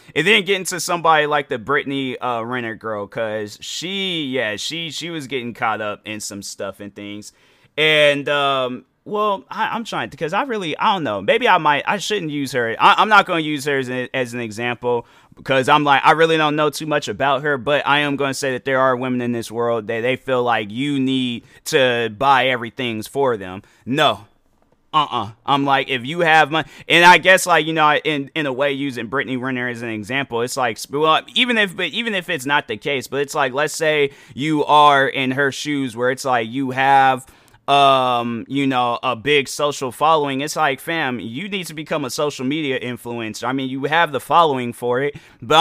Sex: male